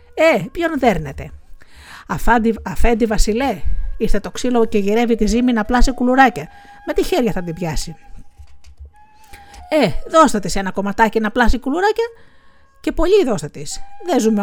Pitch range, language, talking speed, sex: 185-295 Hz, Greek, 145 wpm, female